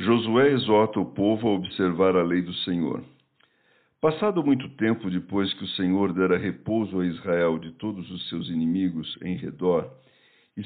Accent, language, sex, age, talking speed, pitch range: Brazilian, Portuguese, male, 60-79, 165 wpm, 90-120 Hz